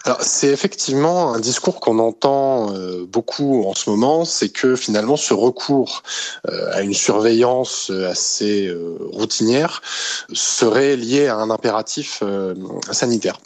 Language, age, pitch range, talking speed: French, 20-39, 110-140 Hz, 140 wpm